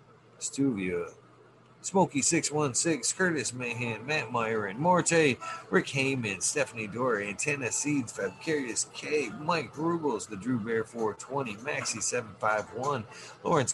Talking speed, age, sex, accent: 115 wpm, 50-69, male, American